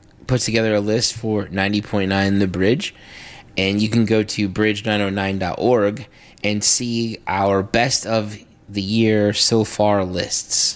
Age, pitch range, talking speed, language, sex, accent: 20-39, 100-120 Hz, 135 wpm, English, male, American